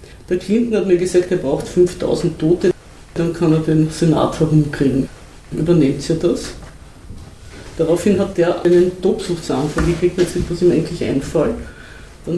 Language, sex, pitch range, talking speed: German, female, 155-180 Hz, 150 wpm